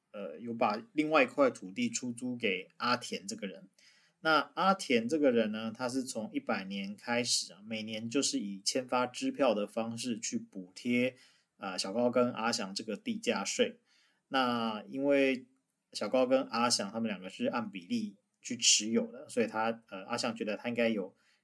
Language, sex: Chinese, male